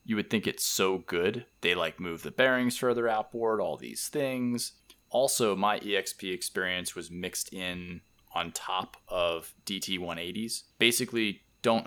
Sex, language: male, English